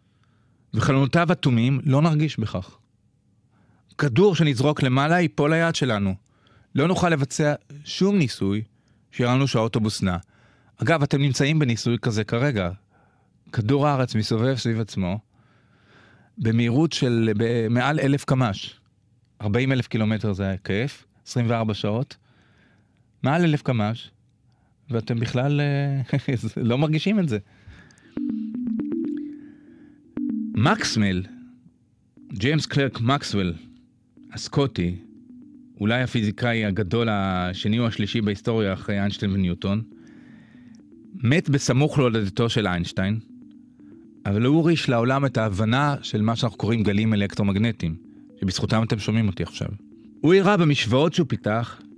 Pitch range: 110-145 Hz